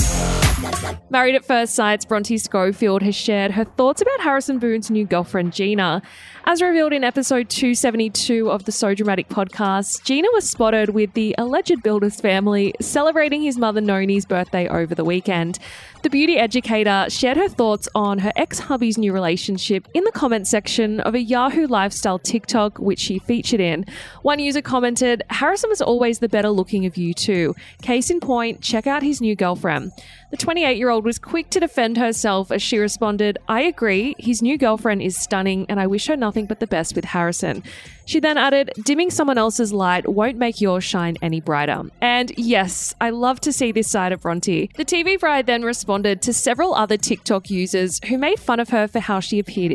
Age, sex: 20-39, female